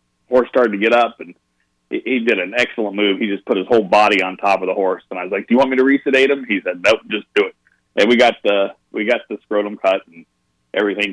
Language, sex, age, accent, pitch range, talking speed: English, male, 40-59, American, 95-110 Hz, 270 wpm